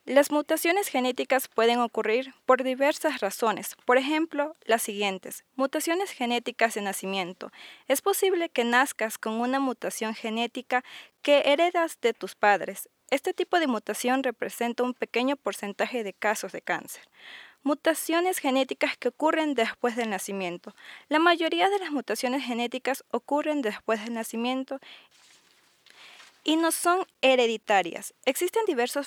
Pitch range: 230-305 Hz